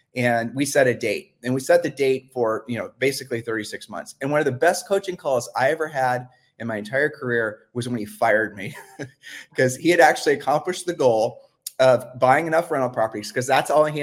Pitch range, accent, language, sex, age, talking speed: 125-155 Hz, American, English, male, 30-49, 220 wpm